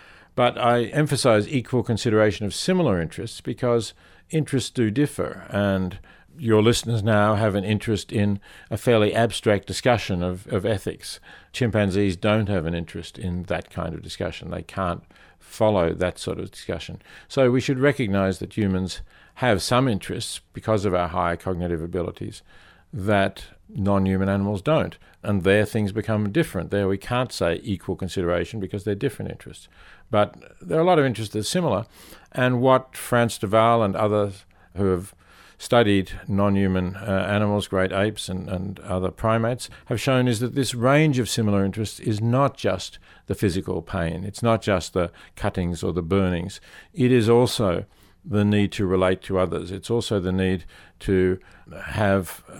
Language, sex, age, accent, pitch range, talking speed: English, male, 50-69, Australian, 90-110 Hz, 165 wpm